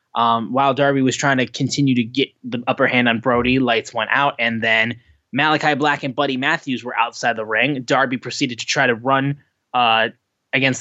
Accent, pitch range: American, 120-145 Hz